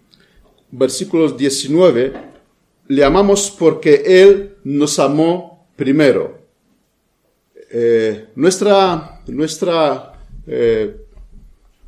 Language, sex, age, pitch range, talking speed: Spanish, male, 50-69, 145-195 Hz, 65 wpm